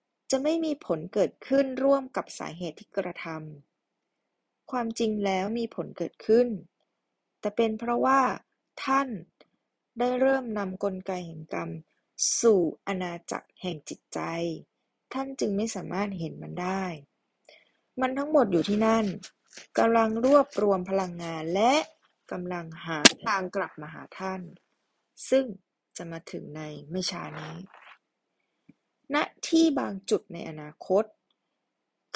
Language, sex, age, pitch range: Thai, female, 20-39, 180-255 Hz